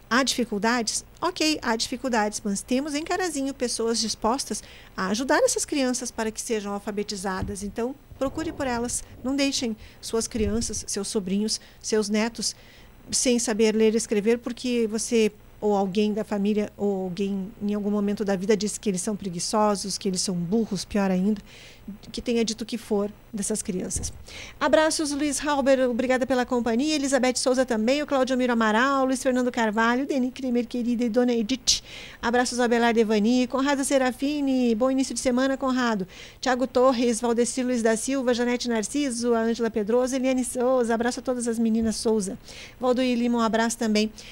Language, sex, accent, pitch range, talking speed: Portuguese, female, Brazilian, 220-255 Hz, 170 wpm